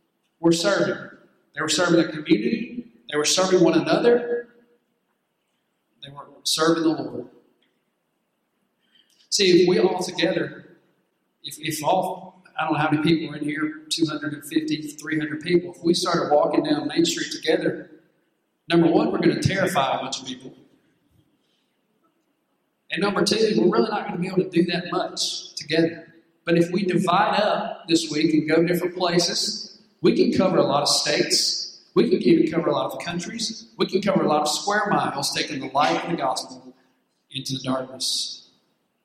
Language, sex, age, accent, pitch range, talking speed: English, male, 40-59, American, 150-185 Hz, 175 wpm